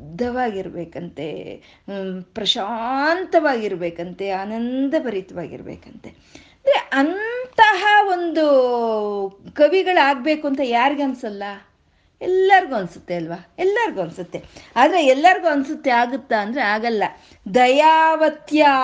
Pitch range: 225-310 Hz